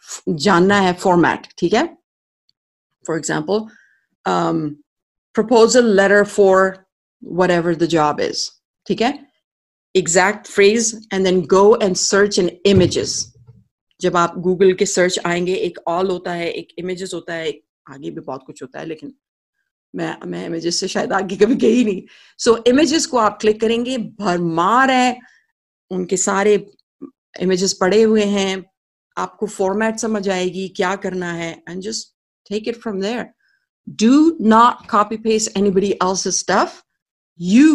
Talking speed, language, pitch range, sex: 95 wpm, English, 175-220 Hz, female